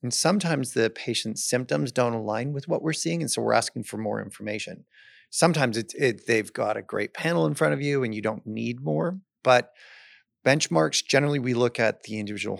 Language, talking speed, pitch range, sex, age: English, 205 wpm, 115-150 Hz, male, 30-49